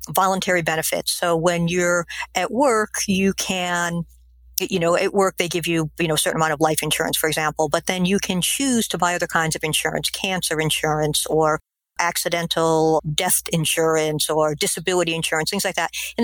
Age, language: 50-69, English